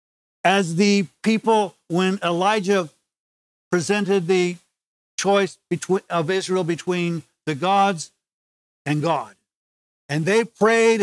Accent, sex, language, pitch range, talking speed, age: American, male, English, 155-205 Hz, 100 wpm, 50-69